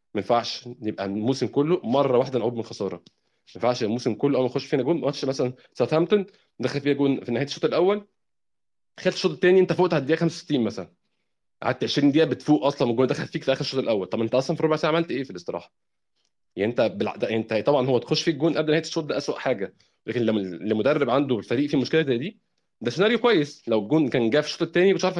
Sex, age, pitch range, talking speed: male, 20-39, 120-165 Hz, 225 wpm